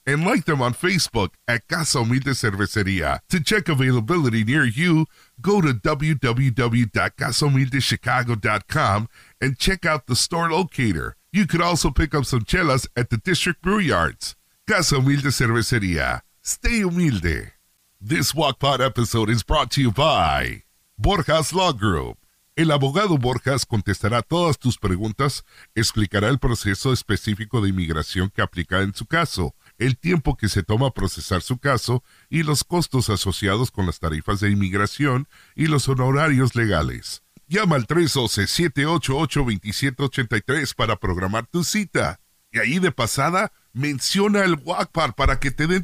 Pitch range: 110-160 Hz